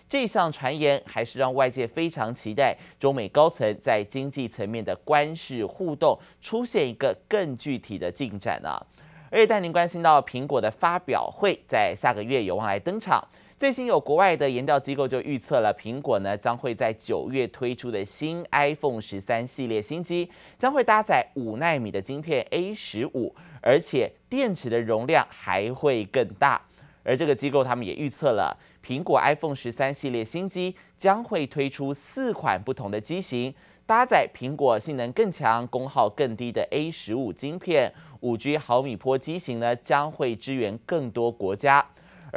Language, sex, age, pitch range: Chinese, male, 20-39, 120-165 Hz